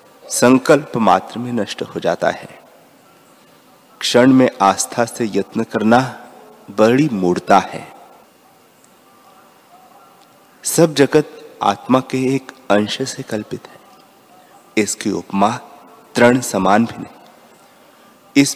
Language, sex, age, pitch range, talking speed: Hindi, male, 30-49, 100-130 Hz, 105 wpm